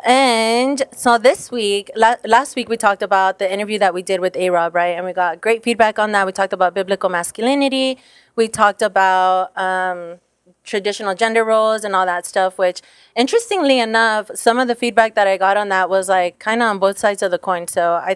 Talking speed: 210 wpm